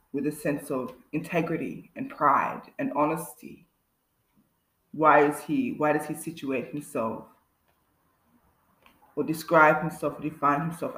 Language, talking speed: English, 125 wpm